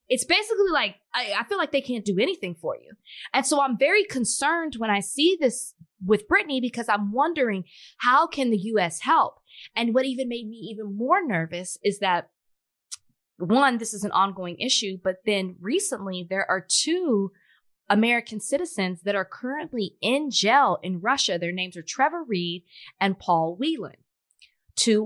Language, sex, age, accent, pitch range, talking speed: English, female, 20-39, American, 185-255 Hz, 170 wpm